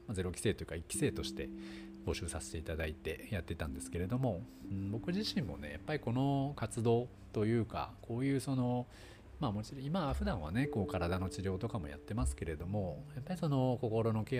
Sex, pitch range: male, 80-130 Hz